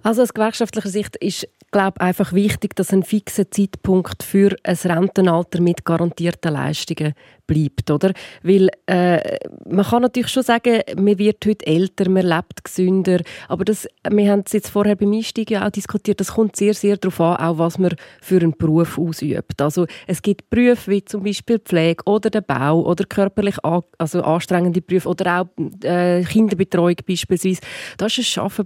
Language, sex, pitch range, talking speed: German, female, 170-210 Hz, 175 wpm